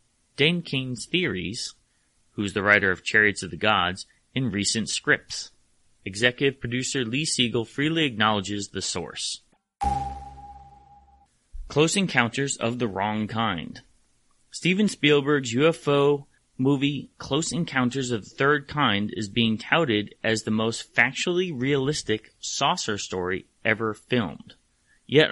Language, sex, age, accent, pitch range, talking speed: English, male, 30-49, American, 105-145 Hz, 125 wpm